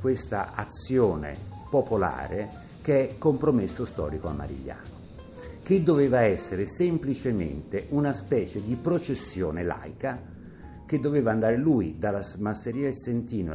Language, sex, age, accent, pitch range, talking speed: Italian, male, 60-79, native, 90-125 Hz, 115 wpm